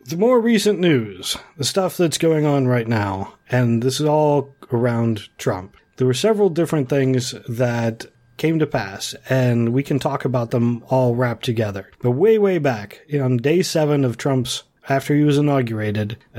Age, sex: 40-59, male